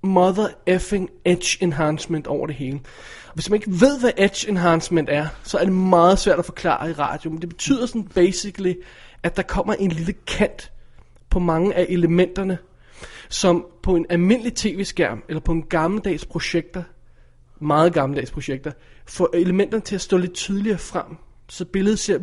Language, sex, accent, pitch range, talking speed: Danish, male, native, 160-190 Hz, 175 wpm